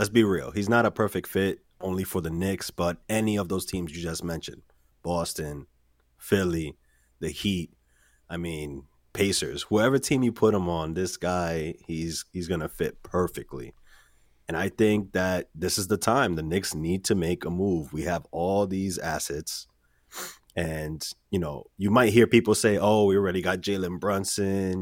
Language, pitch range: English, 80-105 Hz